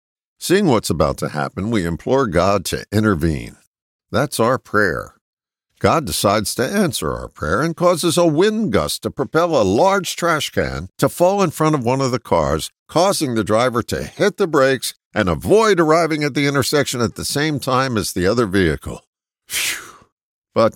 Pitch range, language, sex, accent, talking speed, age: 95-160 Hz, English, male, American, 180 wpm, 60-79